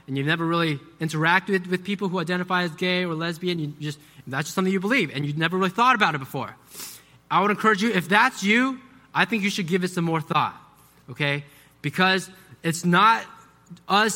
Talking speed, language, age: 210 wpm, English, 20-39